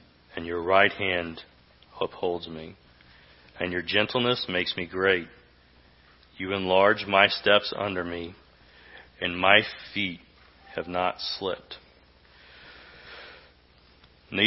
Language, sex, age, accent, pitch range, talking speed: English, male, 40-59, American, 90-120 Hz, 105 wpm